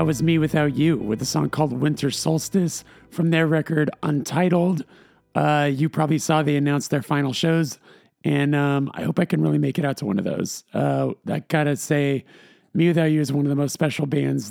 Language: English